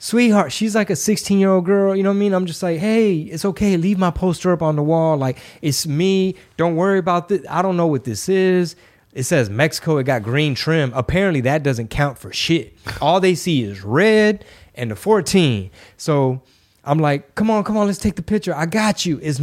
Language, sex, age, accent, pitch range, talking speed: English, male, 20-39, American, 125-175 Hz, 230 wpm